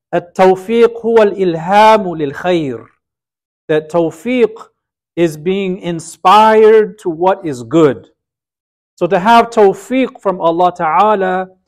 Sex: male